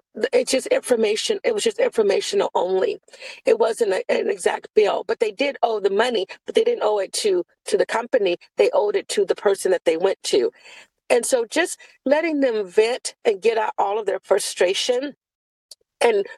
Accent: American